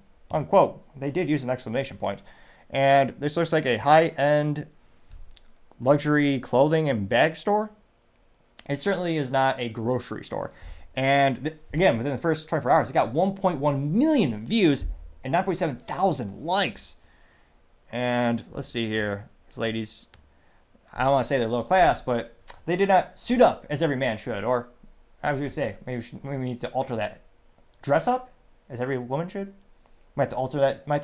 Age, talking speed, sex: 30-49, 180 wpm, male